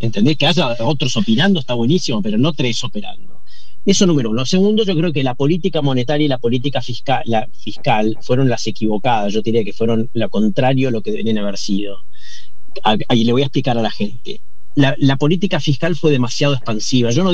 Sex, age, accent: male, 40-59, Argentinian